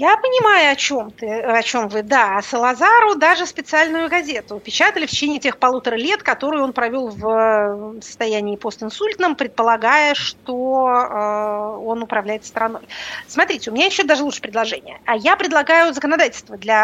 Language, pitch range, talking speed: Russian, 230-320 Hz, 150 wpm